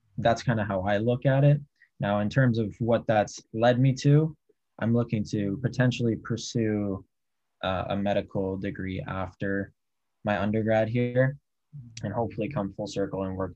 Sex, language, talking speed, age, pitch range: male, English, 165 wpm, 10-29, 95-120 Hz